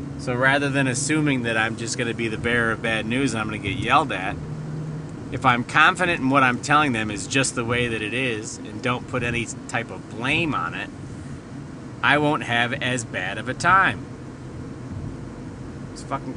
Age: 30-49